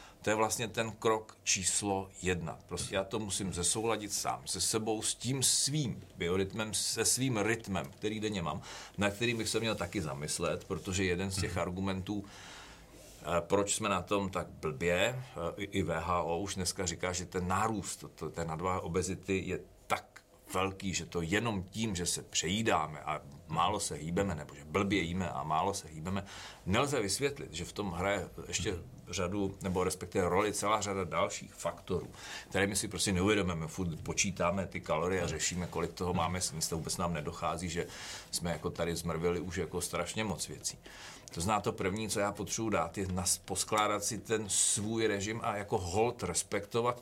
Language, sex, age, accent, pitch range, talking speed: Czech, male, 40-59, native, 90-105 Hz, 180 wpm